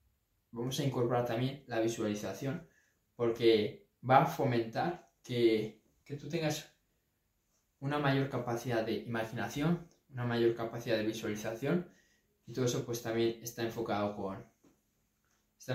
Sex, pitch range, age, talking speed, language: male, 115-140 Hz, 20-39, 125 wpm, Spanish